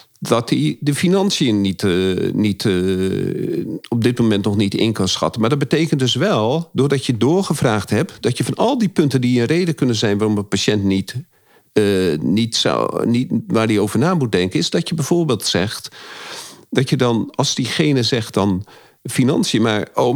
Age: 50-69